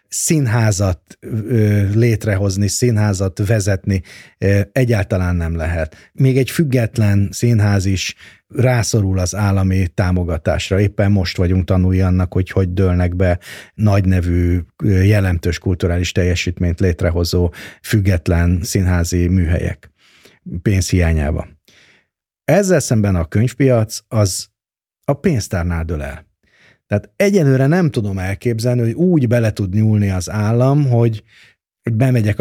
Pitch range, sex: 90-120 Hz, male